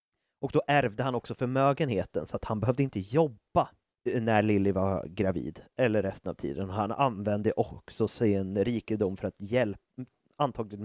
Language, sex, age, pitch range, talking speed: Swedish, male, 30-49, 105-135 Hz, 160 wpm